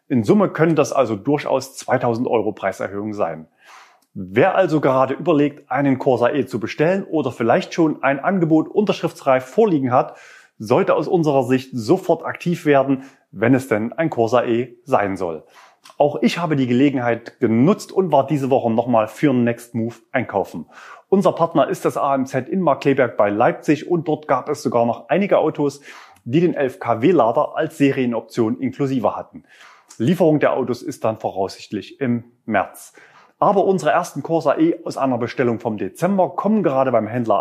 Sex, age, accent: male, 30-49, German